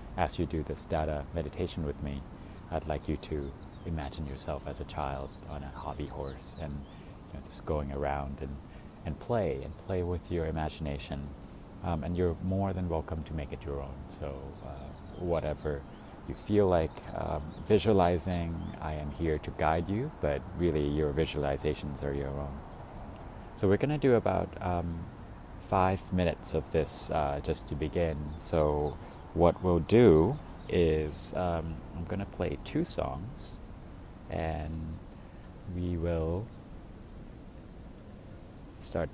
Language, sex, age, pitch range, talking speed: English, male, 30-49, 75-95 Hz, 150 wpm